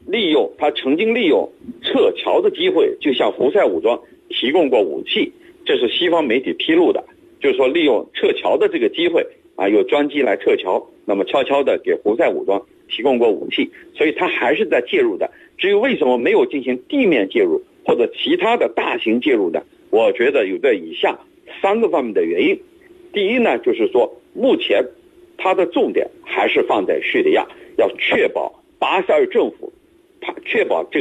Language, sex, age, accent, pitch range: Chinese, male, 50-69, native, 355-430 Hz